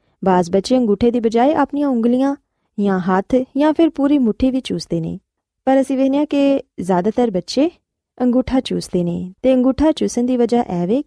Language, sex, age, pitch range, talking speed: Punjabi, female, 20-39, 190-260 Hz, 170 wpm